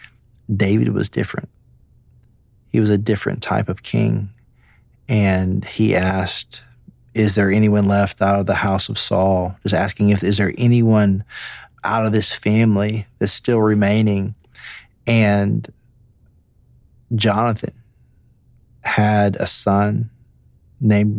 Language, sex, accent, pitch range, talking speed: English, male, American, 100-110 Hz, 120 wpm